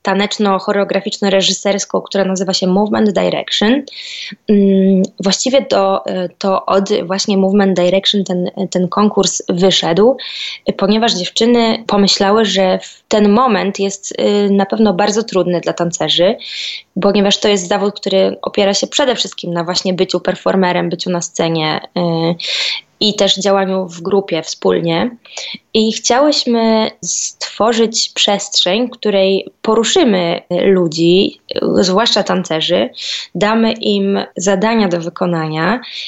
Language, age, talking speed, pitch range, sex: Polish, 20-39, 110 wpm, 180-210 Hz, female